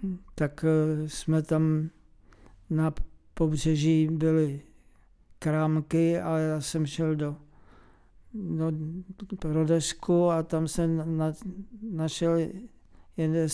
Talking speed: 90 wpm